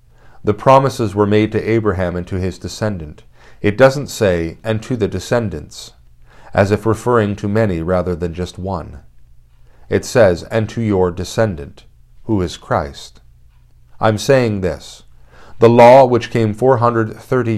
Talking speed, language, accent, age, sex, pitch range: 145 wpm, English, American, 40-59, male, 90-115 Hz